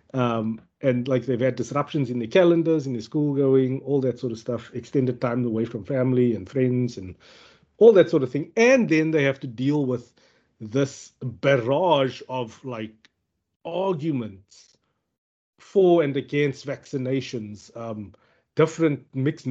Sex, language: male, English